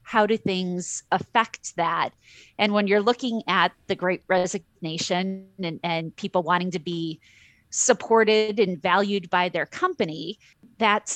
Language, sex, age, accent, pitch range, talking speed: English, female, 30-49, American, 180-225 Hz, 140 wpm